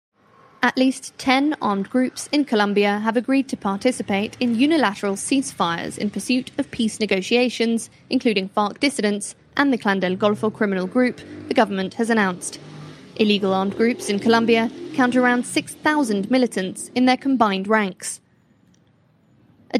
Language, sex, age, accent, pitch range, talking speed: English, female, 20-39, British, 200-255 Hz, 140 wpm